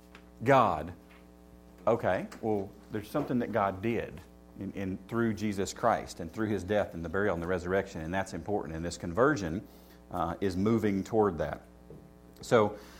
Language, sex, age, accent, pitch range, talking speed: English, male, 40-59, American, 80-110 Hz, 160 wpm